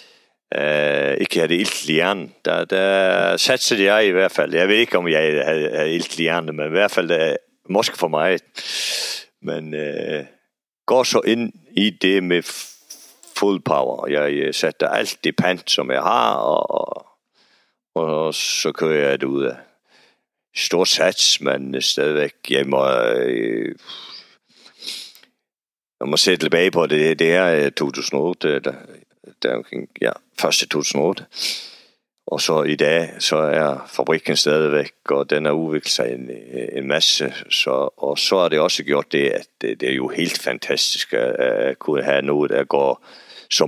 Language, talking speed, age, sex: Danish, 150 wpm, 50-69, male